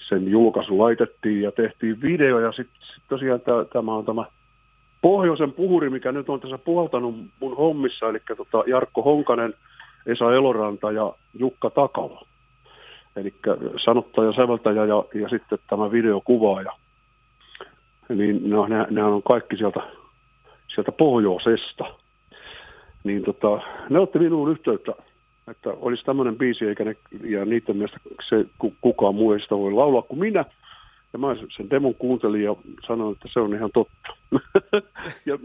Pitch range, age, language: 105-135 Hz, 50-69, Finnish